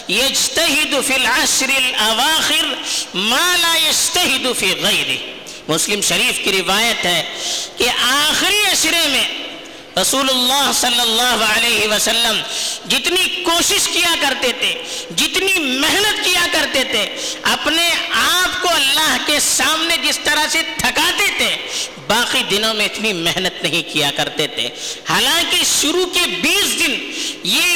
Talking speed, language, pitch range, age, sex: 115 wpm, Urdu, 235-335 Hz, 50-69, female